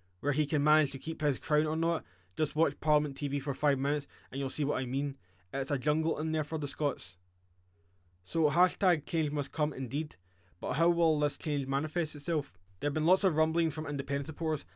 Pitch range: 135-155 Hz